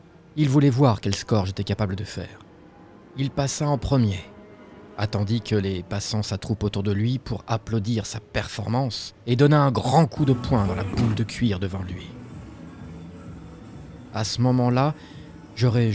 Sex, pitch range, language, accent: male, 100-125 Hz, French, French